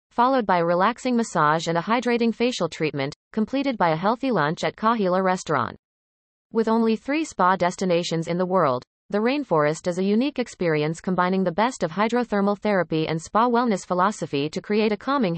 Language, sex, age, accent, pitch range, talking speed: English, female, 30-49, American, 165-225 Hz, 180 wpm